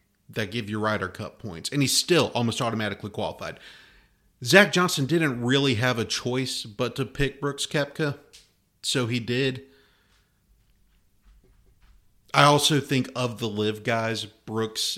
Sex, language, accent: male, English, American